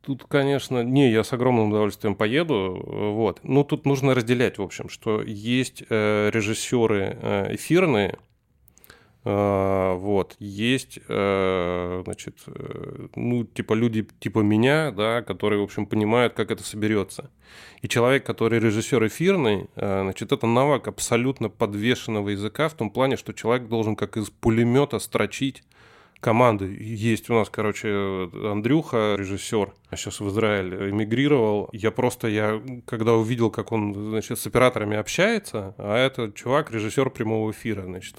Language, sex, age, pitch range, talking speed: Russian, male, 20-39, 105-120 Hz, 145 wpm